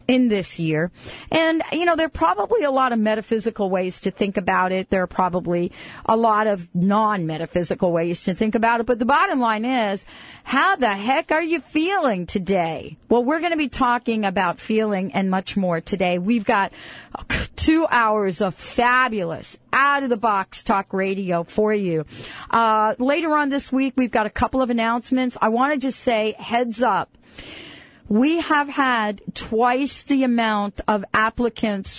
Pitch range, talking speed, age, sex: 195-255 Hz, 175 wpm, 40-59, female